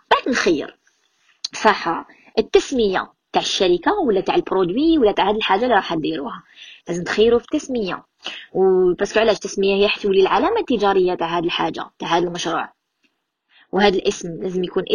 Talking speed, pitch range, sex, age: 145 wpm, 180-255 Hz, female, 20-39